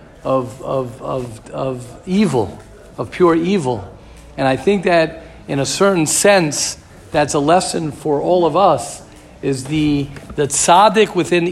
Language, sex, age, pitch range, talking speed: English, male, 50-69, 145-190 Hz, 145 wpm